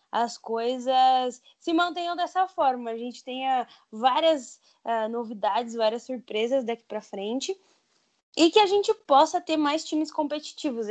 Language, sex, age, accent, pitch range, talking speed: Portuguese, female, 10-29, Brazilian, 230-305 Hz, 145 wpm